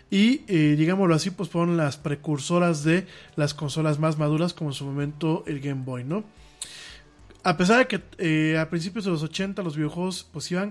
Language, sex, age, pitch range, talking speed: Spanish, male, 20-39, 150-180 Hz, 195 wpm